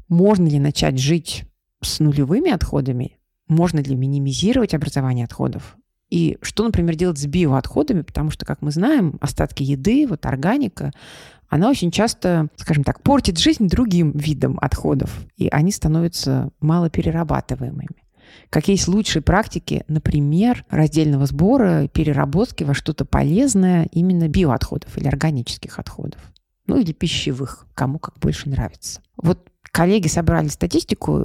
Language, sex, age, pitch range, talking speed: Russian, female, 30-49, 140-180 Hz, 130 wpm